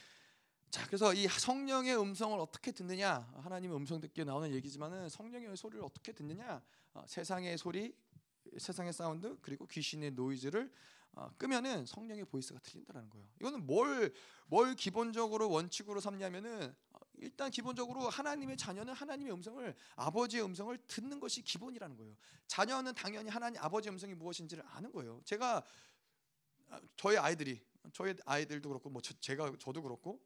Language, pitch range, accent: Korean, 175-245 Hz, native